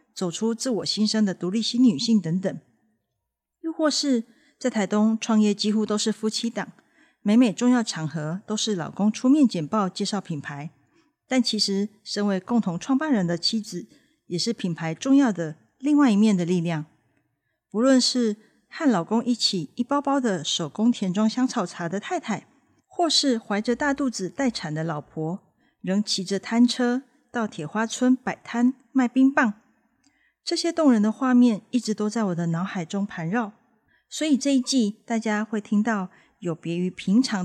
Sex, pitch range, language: female, 185-255 Hz, Chinese